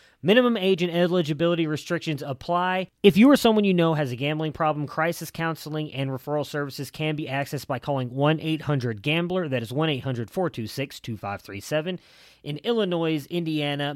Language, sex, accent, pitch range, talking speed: English, male, American, 130-170 Hz, 140 wpm